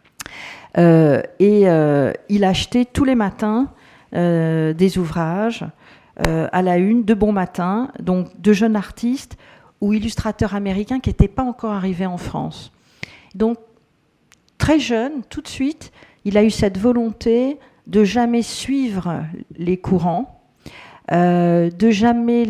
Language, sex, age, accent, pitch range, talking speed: French, female, 50-69, French, 180-230 Hz, 135 wpm